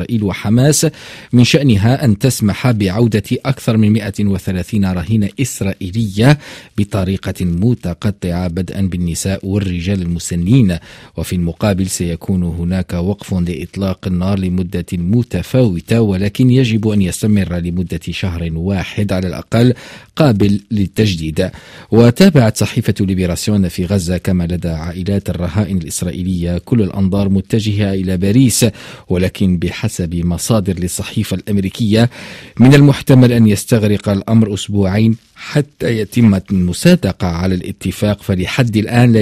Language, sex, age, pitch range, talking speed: Arabic, male, 50-69, 90-115 Hz, 110 wpm